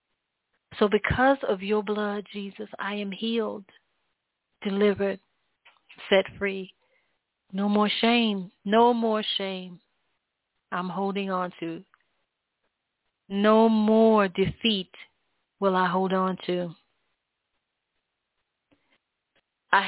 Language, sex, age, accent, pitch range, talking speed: English, female, 40-59, American, 190-215 Hz, 95 wpm